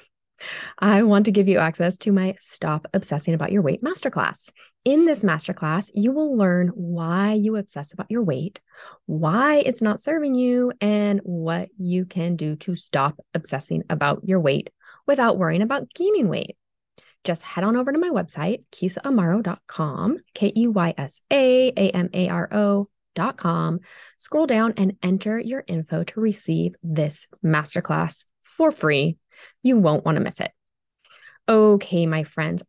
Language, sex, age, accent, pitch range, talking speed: English, female, 20-39, American, 165-225 Hz, 140 wpm